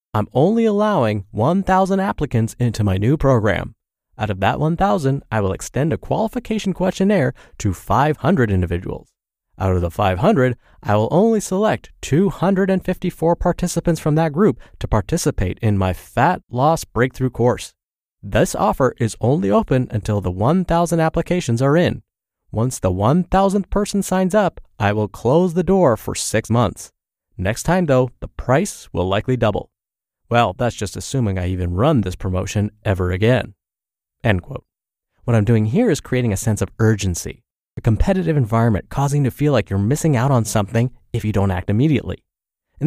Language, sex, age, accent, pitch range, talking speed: English, male, 30-49, American, 105-165 Hz, 165 wpm